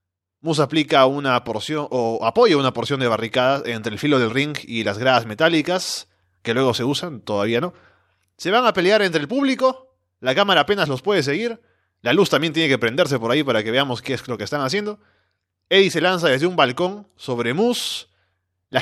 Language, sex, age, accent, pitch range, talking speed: Spanish, male, 20-39, Argentinian, 115-175 Hz, 205 wpm